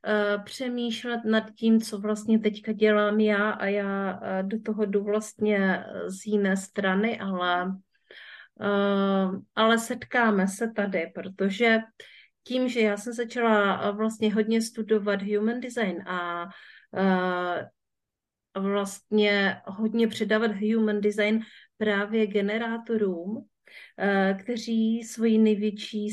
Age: 40-59